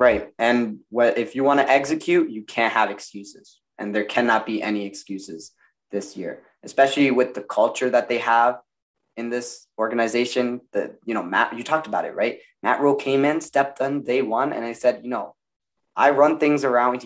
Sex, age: male, 20-39